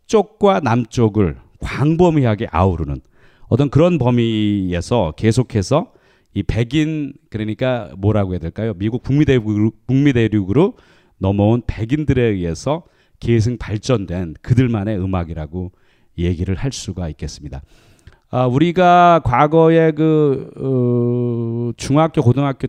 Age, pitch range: 40-59, 100-140 Hz